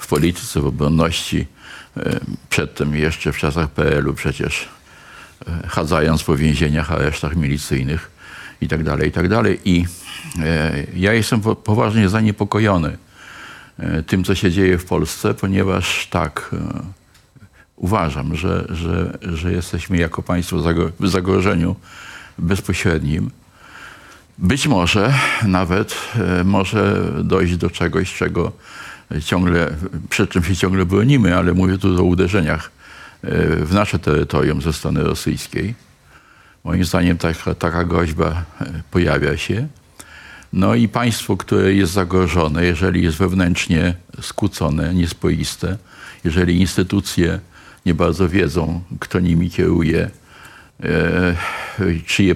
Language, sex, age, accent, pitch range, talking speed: Polish, male, 50-69, native, 85-100 Hz, 105 wpm